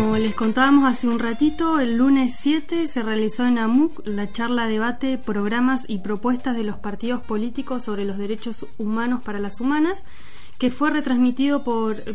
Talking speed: 170 wpm